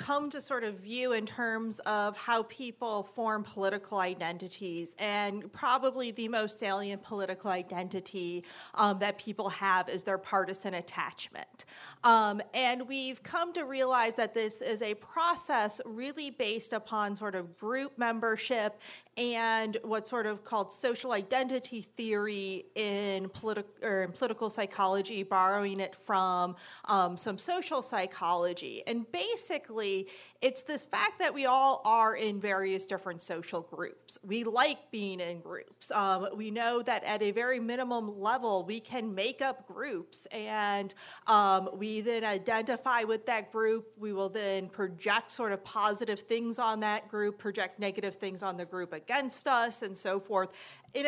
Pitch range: 195-235 Hz